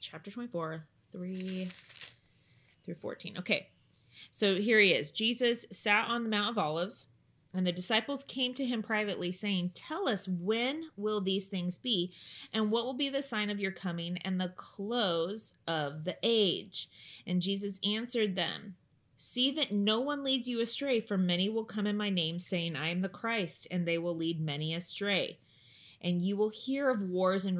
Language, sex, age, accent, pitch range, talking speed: English, female, 20-39, American, 170-220 Hz, 180 wpm